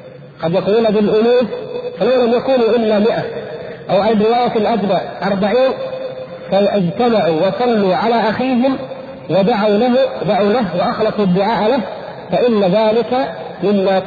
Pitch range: 175-215 Hz